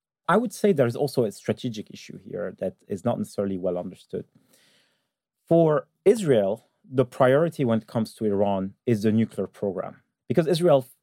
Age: 40-59